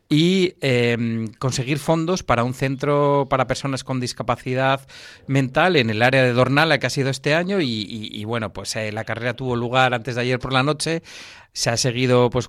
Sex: male